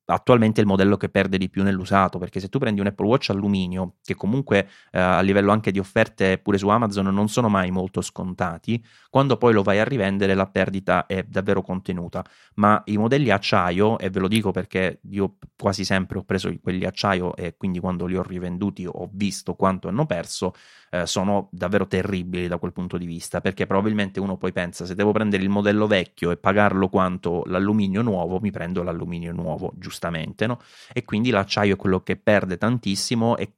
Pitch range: 90-105 Hz